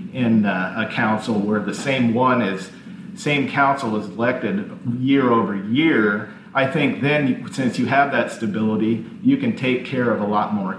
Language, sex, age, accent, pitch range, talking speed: English, male, 40-59, American, 115-195 Hz, 180 wpm